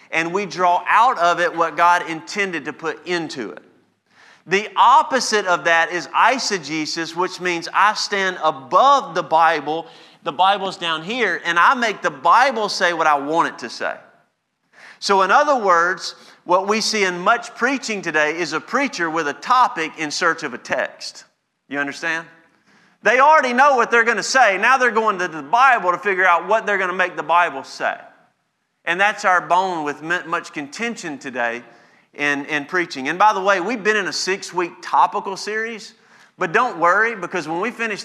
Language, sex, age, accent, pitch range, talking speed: English, male, 40-59, American, 165-205 Hz, 190 wpm